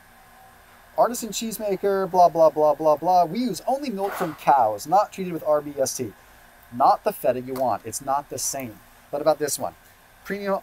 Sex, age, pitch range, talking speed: male, 30-49, 130-180 Hz, 175 wpm